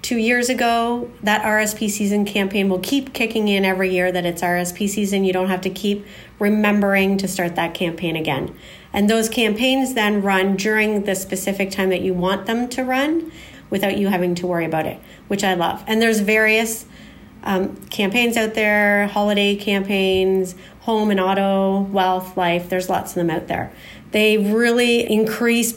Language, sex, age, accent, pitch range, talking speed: English, female, 40-59, American, 185-220 Hz, 175 wpm